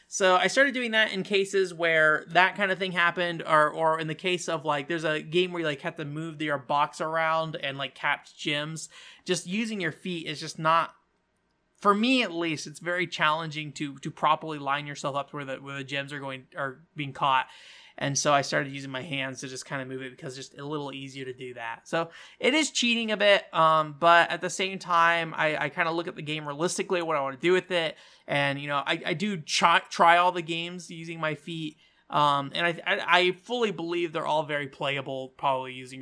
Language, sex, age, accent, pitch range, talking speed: English, male, 20-39, American, 145-185 Hz, 240 wpm